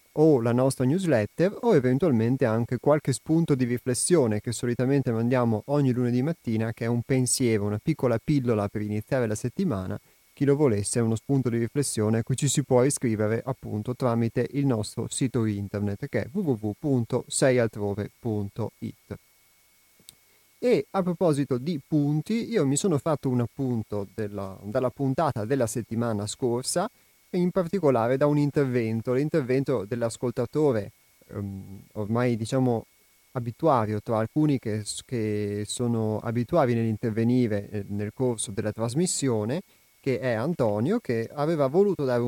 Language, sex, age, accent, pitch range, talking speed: Italian, male, 30-49, native, 110-140 Hz, 135 wpm